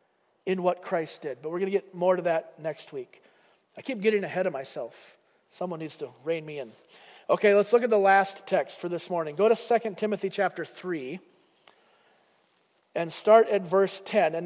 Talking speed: 200 wpm